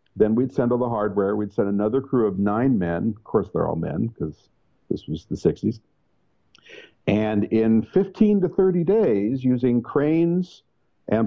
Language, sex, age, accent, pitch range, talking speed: English, male, 50-69, American, 105-135 Hz, 170 wpm